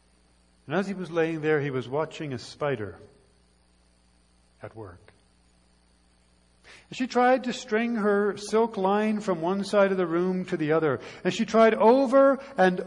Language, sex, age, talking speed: English, male, 60-79, 165 wpm